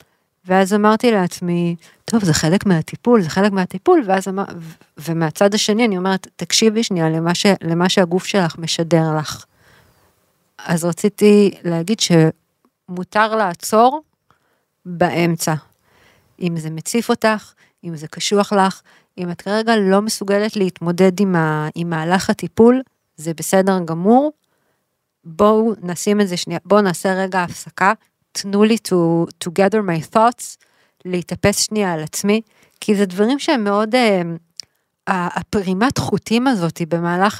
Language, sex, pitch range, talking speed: Hebrew, female, 175-215 Hz, 135 wpm